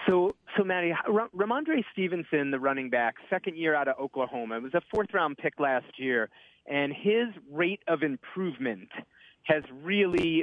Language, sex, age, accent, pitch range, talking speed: English, male, 30-49, American, 145-180 Hz, 160 wpm